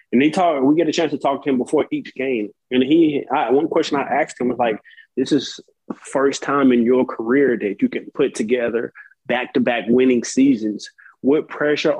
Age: 20-39